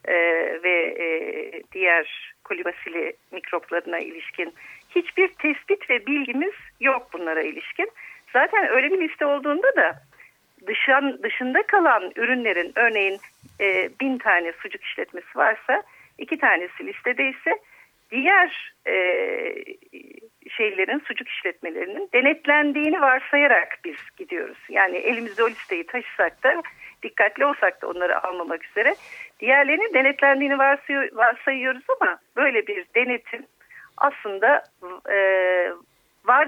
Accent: native